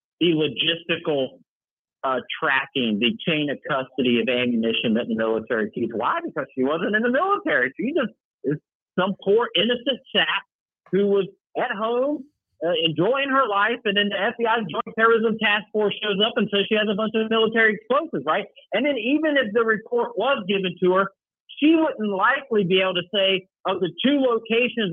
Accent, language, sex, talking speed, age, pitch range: American, English, male, 185 wpm, 50-69, 170-245 Hz